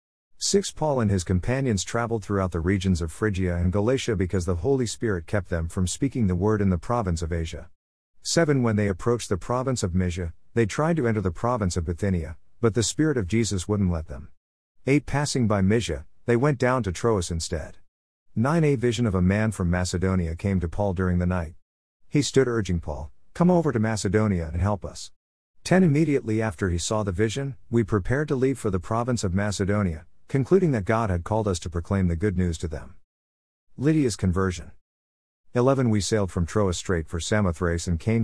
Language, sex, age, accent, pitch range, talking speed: English, male, 50-69, American, 85-115 Hz, 200 wpm